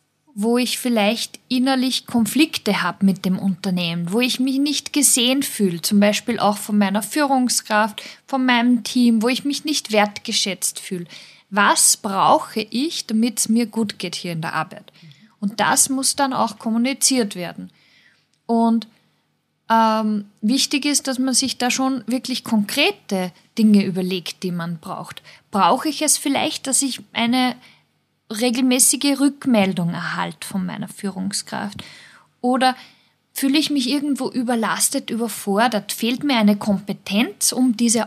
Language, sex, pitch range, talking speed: German, female, 200-260 Hz, 145 wpm